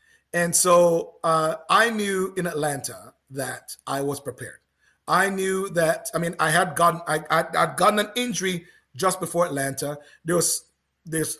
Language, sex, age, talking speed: English, male, 30-49, 165 wpm